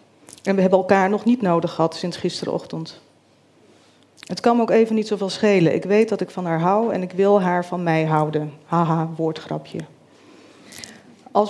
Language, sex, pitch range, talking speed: Dutch, female, 170-220 Hz, 185 wpm